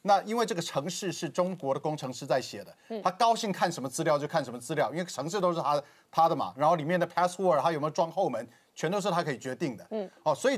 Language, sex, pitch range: Chinese, male, 150-190 Hz